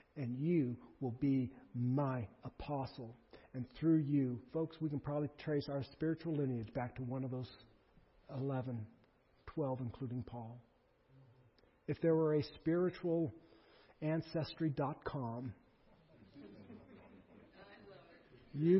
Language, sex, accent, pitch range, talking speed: English, male, American, 120-155 Hz, 105 wpm